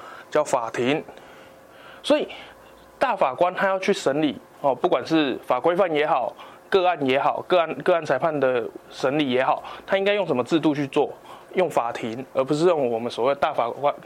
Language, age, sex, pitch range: Chinese, 20-39, male, 135-185 Hz